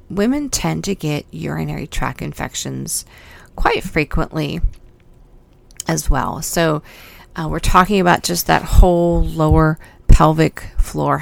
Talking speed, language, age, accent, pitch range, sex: 120 wpm, English, 40-59, American, 140-180 Hz, female